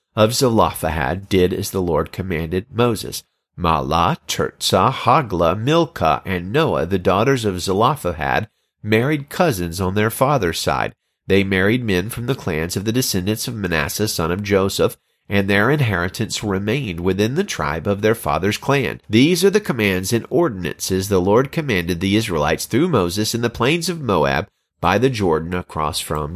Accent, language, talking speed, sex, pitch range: American, English, 165 wpm, male, 95-125 Hz